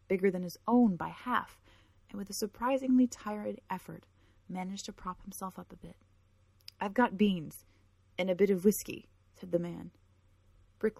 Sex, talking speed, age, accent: female, 170 wpm, 30-49, American